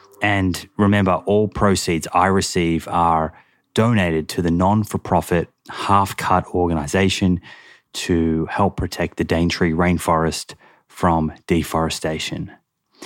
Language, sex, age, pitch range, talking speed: English, male, 20-39, 85-95 Hz, 95 wpm